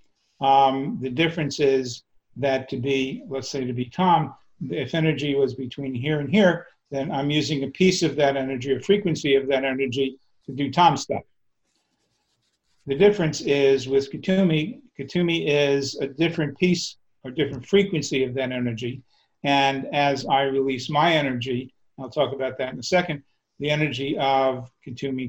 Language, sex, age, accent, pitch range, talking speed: English, male, 50-69, American, 130-145 Hz, 165 wpm